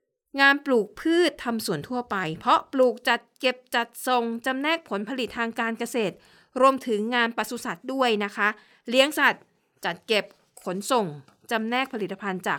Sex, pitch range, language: female, 205-255 Hz, Thai